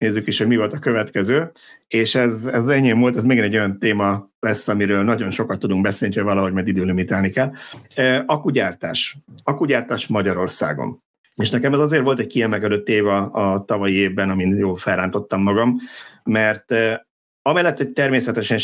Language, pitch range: Hungarian, 95-120 Hz